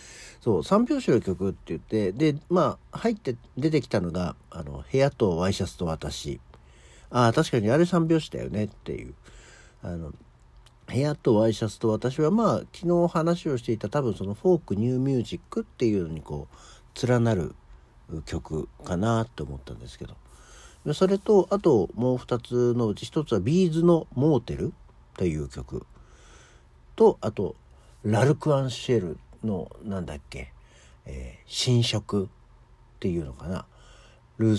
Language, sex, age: Japanese, male, 60-79